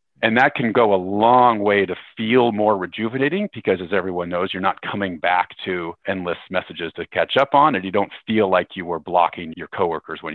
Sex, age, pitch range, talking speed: male, 40-59, 90-110 Hz, 215 wpm